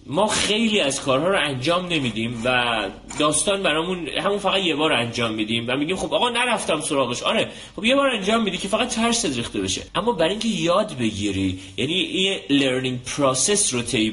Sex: male